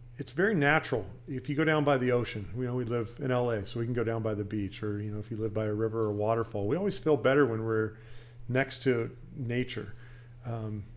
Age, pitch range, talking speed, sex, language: 40-59, 115-130 Hz, 250 wpm, male, English